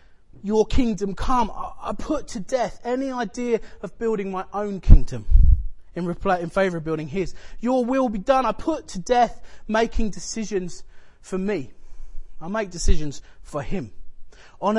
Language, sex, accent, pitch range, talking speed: English, male, British, 175-230 Hz, 155 wpm